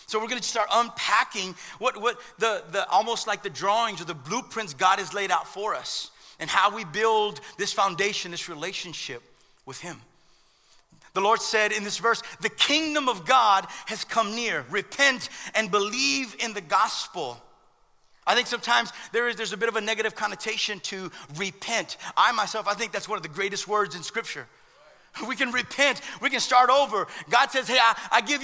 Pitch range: 205-245 Hz